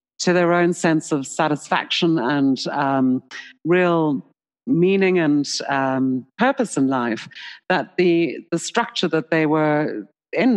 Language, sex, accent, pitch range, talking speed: English, female, British, 150-180 Hz, 130 wpm